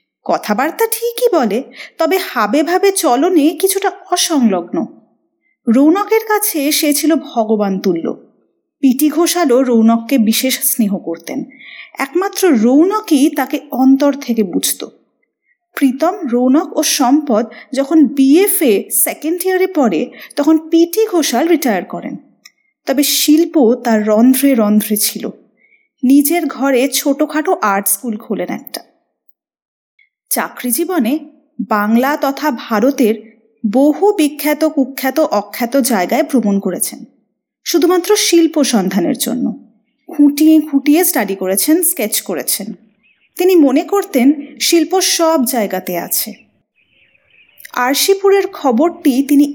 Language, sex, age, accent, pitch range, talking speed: Bengali, female, 30-49, native, 230-320 Hz, 100 wpm